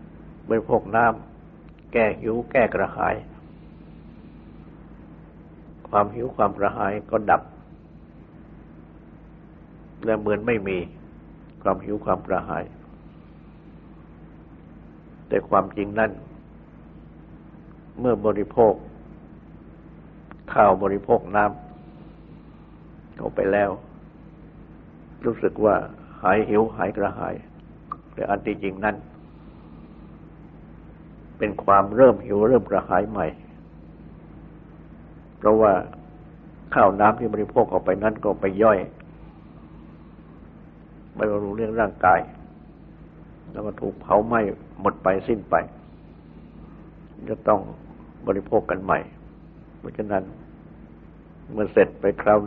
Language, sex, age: Thai, male, 60-79